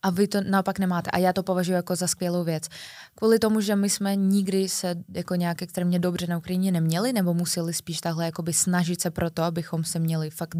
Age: 20-39